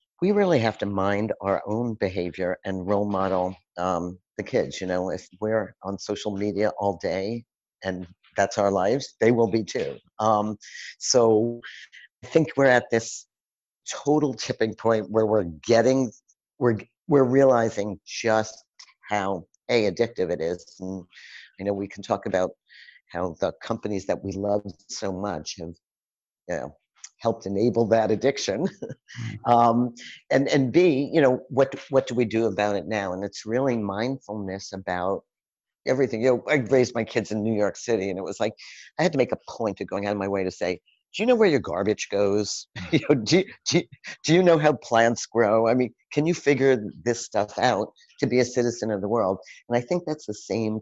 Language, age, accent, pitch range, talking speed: English, 50-69, American, 100-125 Hz, 190 wpm